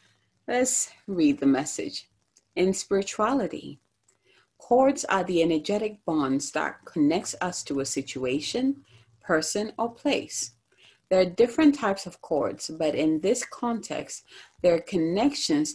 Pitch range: 150-225 Hz